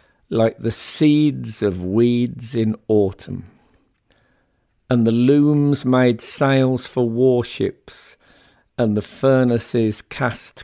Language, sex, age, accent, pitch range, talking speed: English, male, 50-69, British, 105-130 Hz, 100 wpm